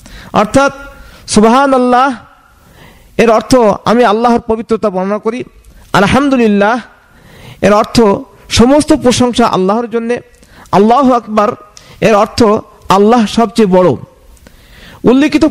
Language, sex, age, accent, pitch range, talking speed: Bengali, male, 50-69, native, 200-245 Hz, 90 wpm